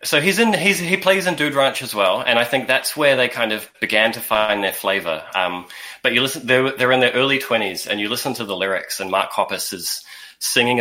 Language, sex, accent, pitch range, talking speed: English, male, Australian, 105-135 Hz, 250 wpm